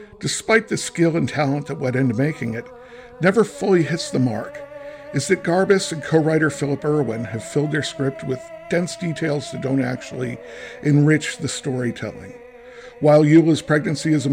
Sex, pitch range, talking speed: male, 135-195 Hz, 170 wpm